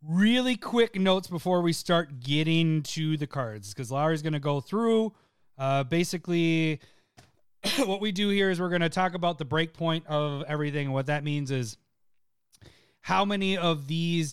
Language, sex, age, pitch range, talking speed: English, male, 30-49, 140-175 Hz, 170 wpm